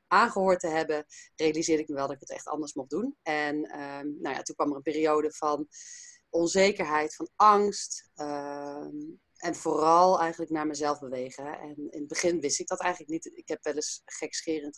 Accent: Dutch